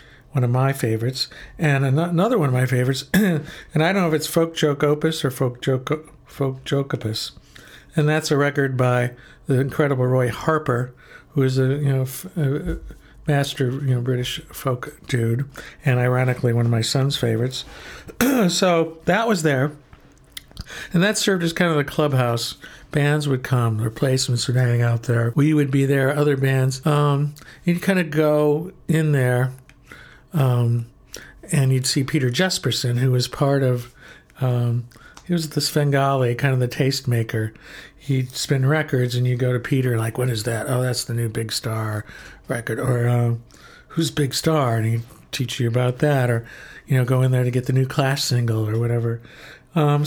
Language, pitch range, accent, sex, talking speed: English, 125-150 Hz, American, male, 185 wpm